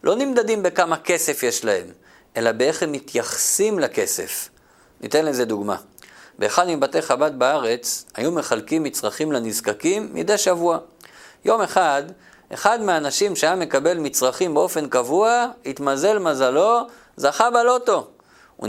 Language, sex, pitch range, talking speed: Hebrew, male, 150-240 Hz, 120 wpm